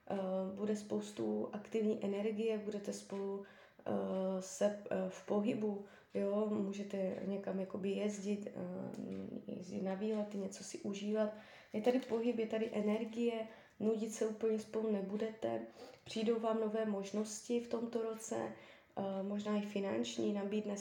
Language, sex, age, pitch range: Czech, female, 20-39, 195-225 Hz